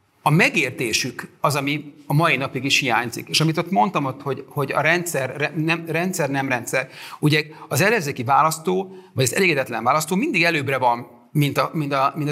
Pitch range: 130-165 Hz